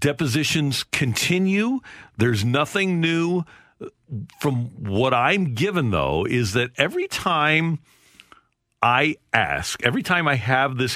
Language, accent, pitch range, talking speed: English, American, 105-140 Hz, 115 wpm